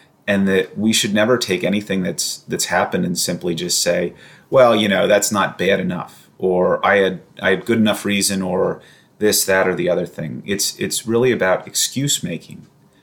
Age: 30-49